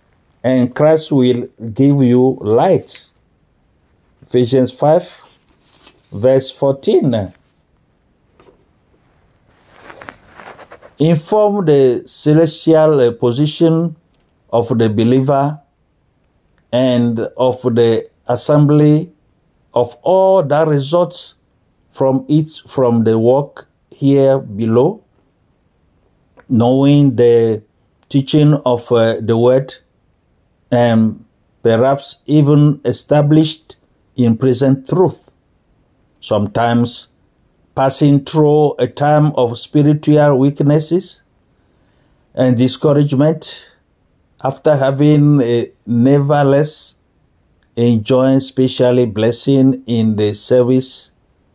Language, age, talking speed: French, 50-69, 75 wpm